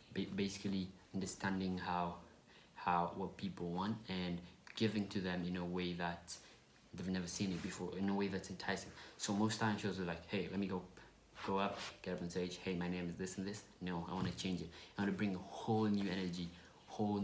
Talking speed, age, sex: 220 wpm, 20-39, male